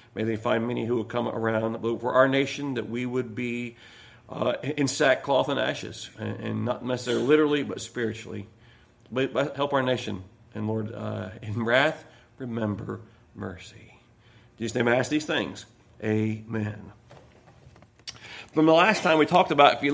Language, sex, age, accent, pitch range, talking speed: English, male, 40-59, American, 125-180 Hz, 170 wpm